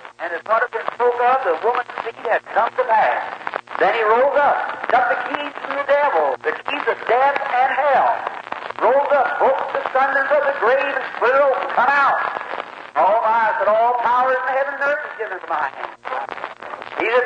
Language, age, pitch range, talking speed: English, 50-69, 235-280 Hz, 200 wpm